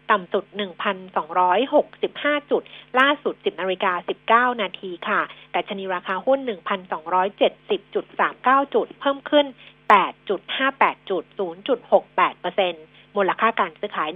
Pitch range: 195-265 Hz